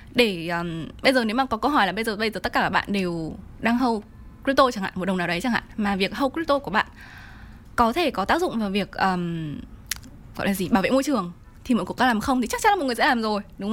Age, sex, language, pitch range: 10-29, female, Vietnamese, 185-240 Hz